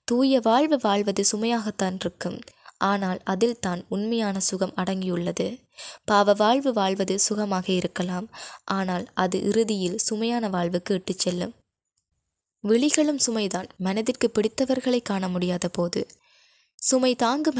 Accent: native